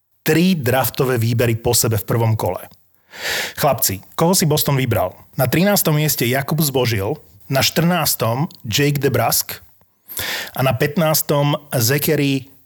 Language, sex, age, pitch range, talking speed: Slovak, male, 30-49, 115-150 Hz, 125 wpm